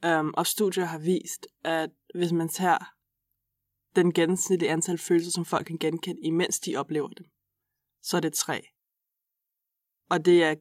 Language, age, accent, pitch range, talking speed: Danish, 20-39, native, 160-180 Hz, 160 wpm